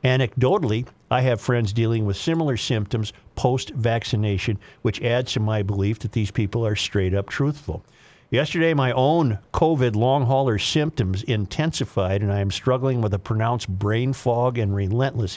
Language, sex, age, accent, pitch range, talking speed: English, male, 50-69, American, 105-130 Hz, 150 wpm